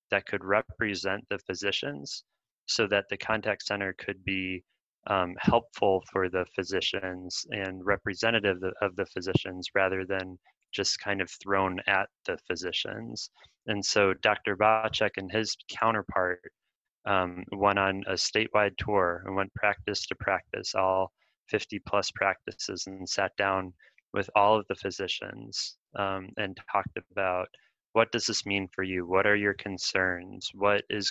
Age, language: 20-39, English